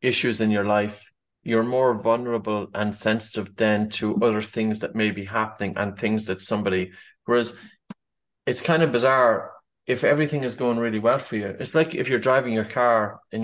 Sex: male